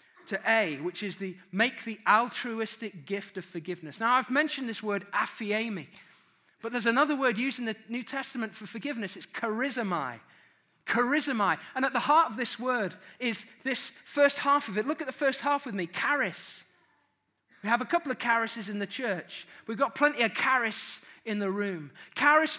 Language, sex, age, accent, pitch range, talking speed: English, male, 30-49, British, 185-255 Hz, 185 wpm